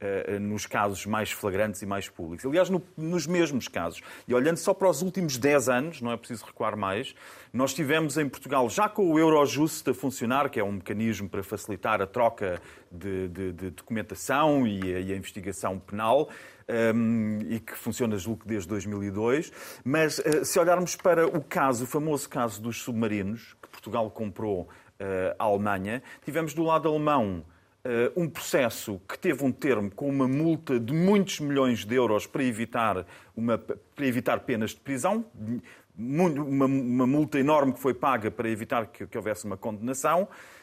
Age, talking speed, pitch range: 40-59, 165 wpm, 115-180 Hz